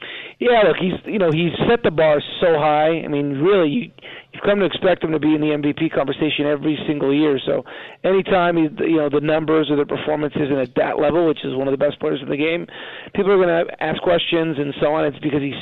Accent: American